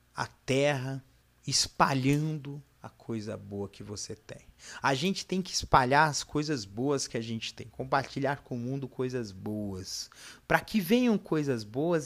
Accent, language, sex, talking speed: Brazilian, Portuguese, male, 160 wpm